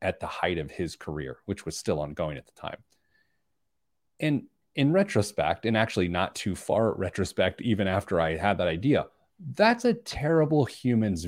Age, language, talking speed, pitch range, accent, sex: 30-49, English, 170 wpm, 90-120 Hz, American, male